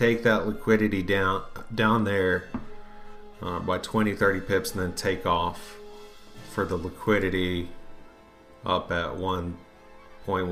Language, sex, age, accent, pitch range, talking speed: English, male, 40-59, American, 95-115 Hz, 125 wpm